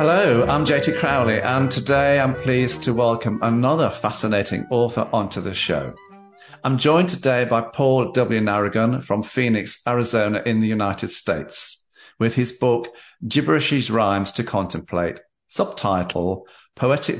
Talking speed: 135 wpm